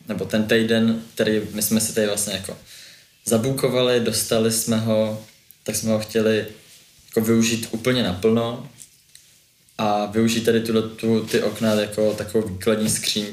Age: 20-39